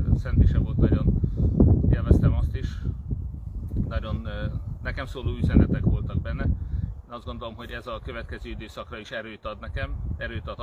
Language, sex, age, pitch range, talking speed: Hungarian, male, 30-49, 85-115 Hz, 145 wpm